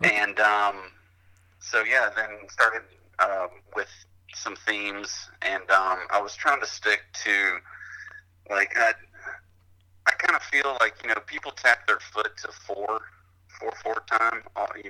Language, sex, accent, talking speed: English, male, American, 155 wpm